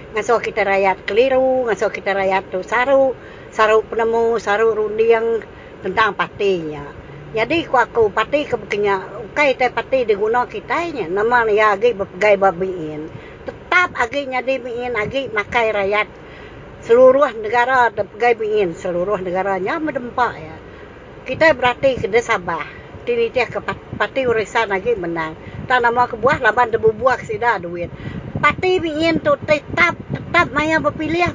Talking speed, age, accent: 125 wpm, 60-79, American